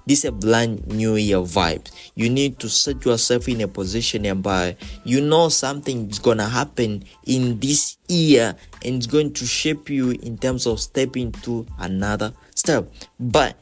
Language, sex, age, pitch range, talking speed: Swahili, male, 20-39, 95-130 Hz, 175 wpm